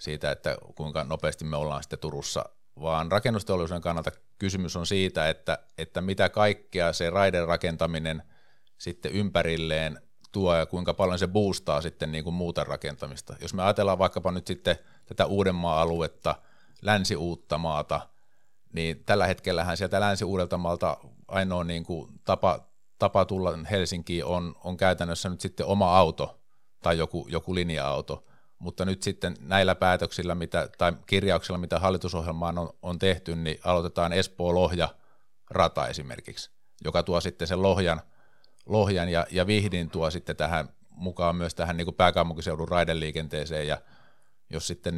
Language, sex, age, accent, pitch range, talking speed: Finnish, male, 50-69, native, 80-95 Hz, 145 wpm